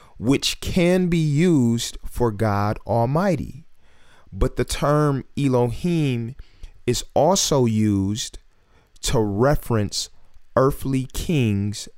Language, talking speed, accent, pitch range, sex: English, 90 wpm, American, 105-140 Hz, male